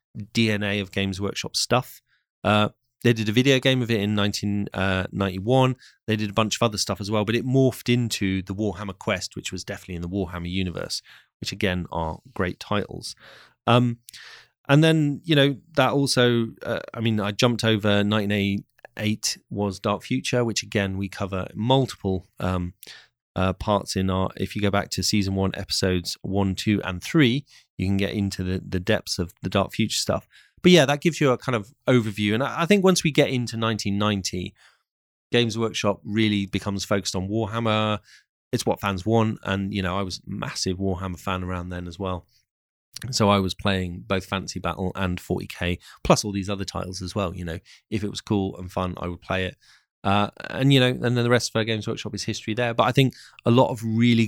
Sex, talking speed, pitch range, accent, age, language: male, 205 wpm, 95-115 Hz, British, 30-49, English